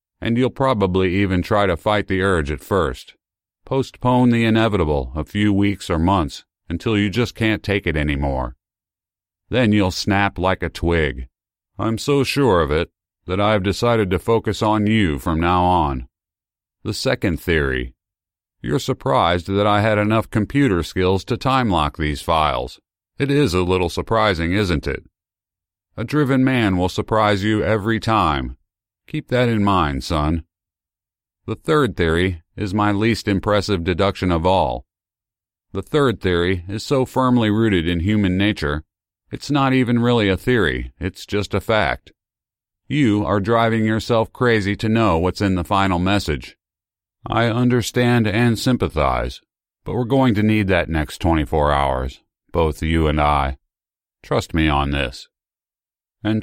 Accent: American